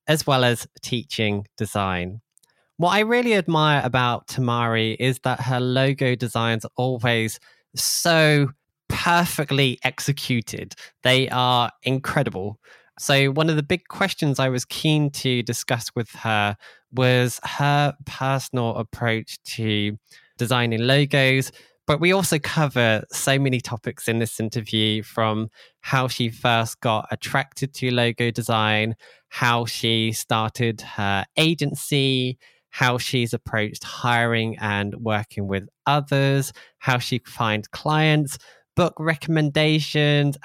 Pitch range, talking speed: 115-145 Hz, 120 wpm